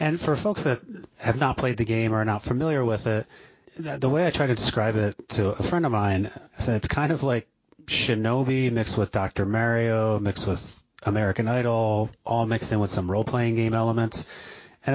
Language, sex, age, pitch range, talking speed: English, male, 30-49, 105-120 Hz, 195 wpm